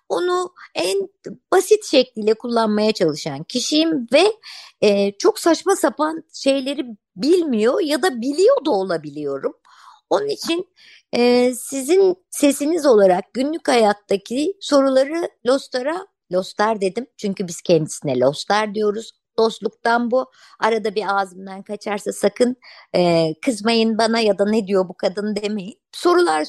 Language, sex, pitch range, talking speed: Turkish, male, 190-290 Hz, 120 wpm